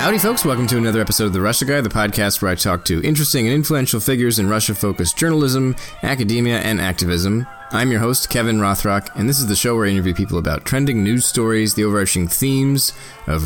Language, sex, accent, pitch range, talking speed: English, male, American, 95-120 Hz, 215 wpm